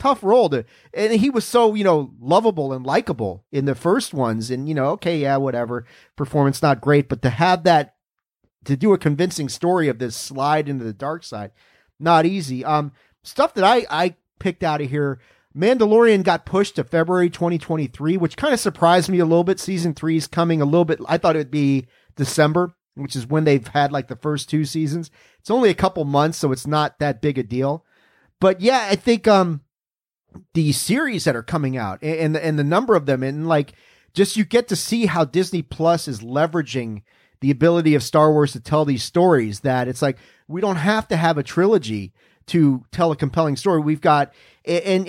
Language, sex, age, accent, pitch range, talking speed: English, male, 40-59, American, 135-170 Hz, 210 wpm